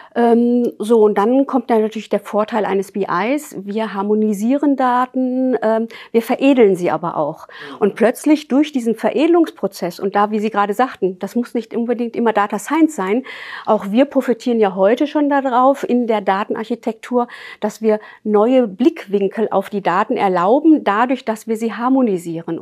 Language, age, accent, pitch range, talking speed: German, 50-69, German, 200-240 Hz, 160 wpm